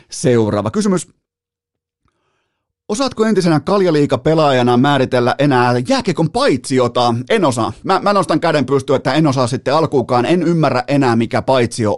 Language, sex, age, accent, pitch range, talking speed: Finnish, male, 30-49, native, 120-150 Hz, 130 wpm